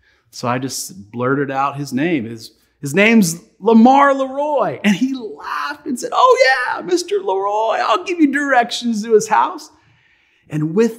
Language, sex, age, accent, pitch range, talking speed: English, male, 30-49, American, 220-280 Hz, 165 wpm